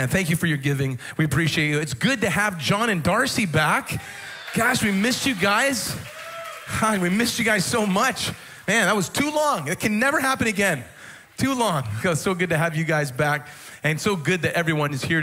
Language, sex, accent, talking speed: English, male, American, 215 wpm